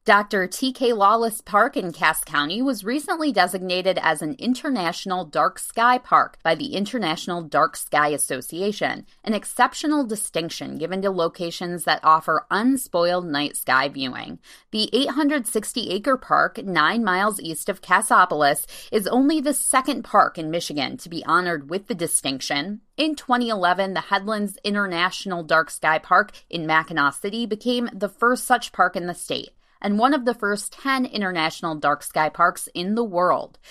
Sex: female